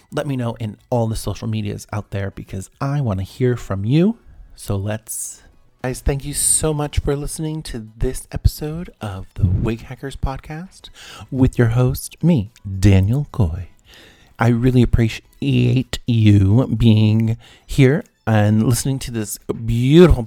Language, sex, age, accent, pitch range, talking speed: English, male, 40-59, American, 105-140 Hz, 150 wpm